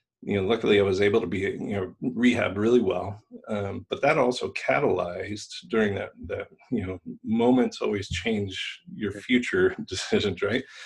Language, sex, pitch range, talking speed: English, male, 95-115 Hz, 165 wpm